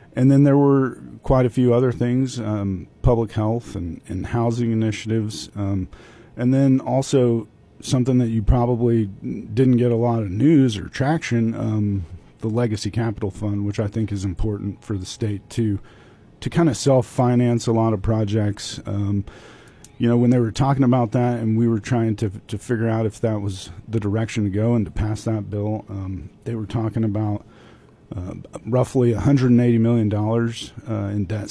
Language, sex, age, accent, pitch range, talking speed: English, male, 40-59, American, 105-120 Hz, 185 wpm